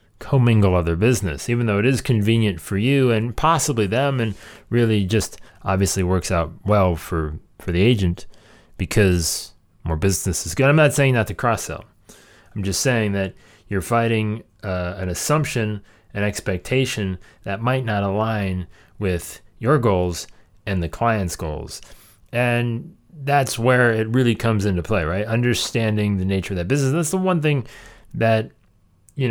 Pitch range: 95-120 Hz